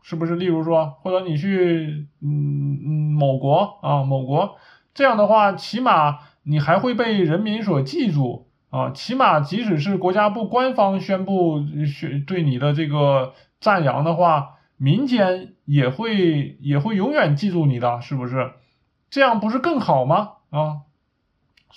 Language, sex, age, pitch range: Chinese, male, 20-39, 145-200 Hz